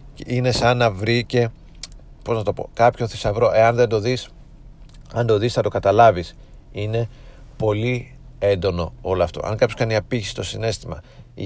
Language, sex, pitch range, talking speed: Greek, male, 95-110 Hz, 160 wpm